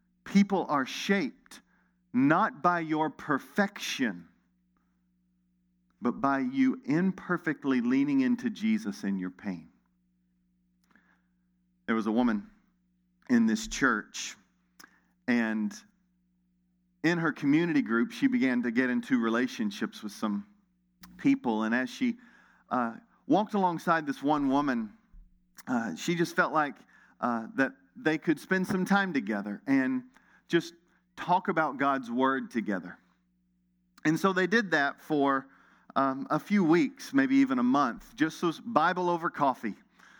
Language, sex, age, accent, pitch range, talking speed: English, male, 40-59, American, 120-190 Hz, 125 wpm